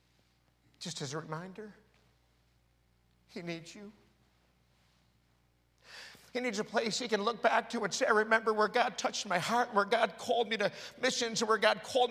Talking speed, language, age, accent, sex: 170 wpm, English, 50-69, American, male